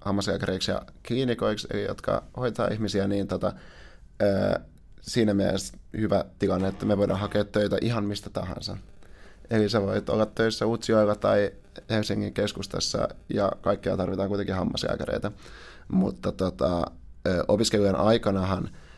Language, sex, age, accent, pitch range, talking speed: Finnish, male, 30-49, native, 95-105 Hz, 125 wpm